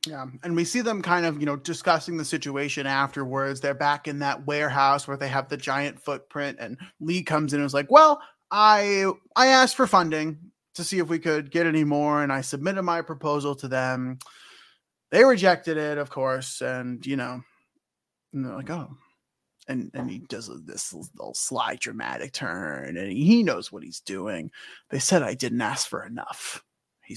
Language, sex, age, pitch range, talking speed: English, male, 20-39, 145-205 Hz, 190 wpm